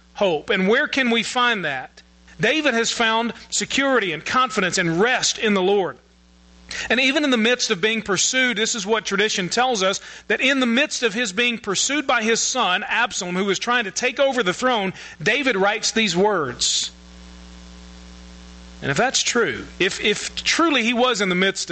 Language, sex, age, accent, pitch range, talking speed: English, male, 40-59, American, 170-235 Hz, 190 wpm